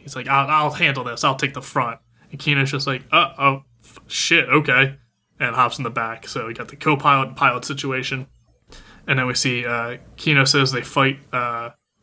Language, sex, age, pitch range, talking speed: English, male, 20-39, 120-145 Hz, 215 wpm